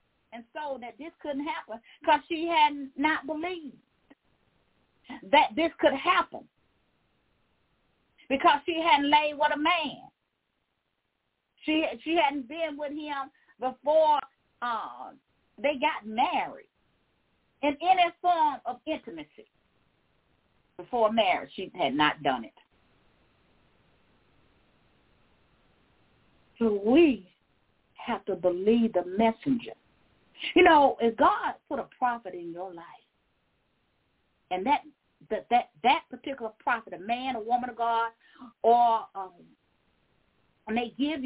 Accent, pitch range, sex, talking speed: American, 235-315 Hz, female, 115 wpm